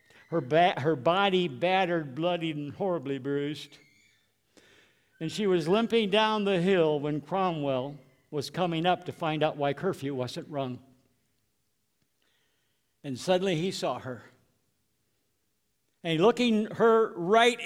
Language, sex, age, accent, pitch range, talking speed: English, male, 60-79, American, 140-215 Hz, 125 wpm